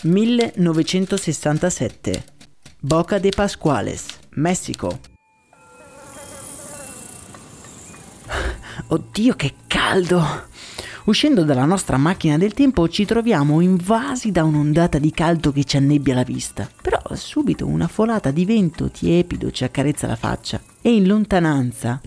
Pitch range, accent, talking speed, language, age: 145-195 Hz, native, 110 wpm, Italian, 30-49